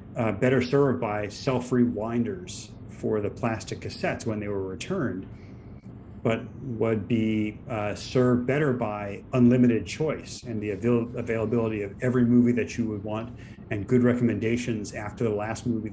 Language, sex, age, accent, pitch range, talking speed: English, male, 40-59, American, 105-125 Hz, 145 wpm